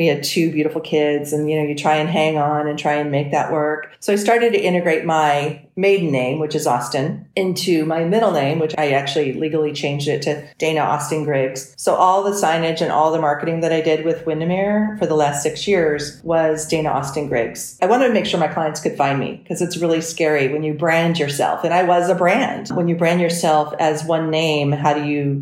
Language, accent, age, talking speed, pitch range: English, American, 40-59, 235 wpm, 150-170 Hz